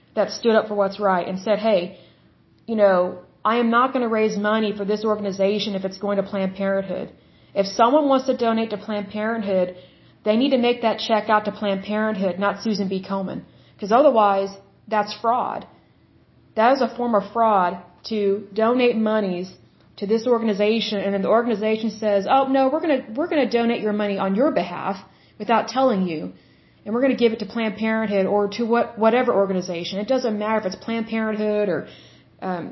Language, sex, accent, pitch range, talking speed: Bengali, female, American, 195-225 Hz, 200 wpm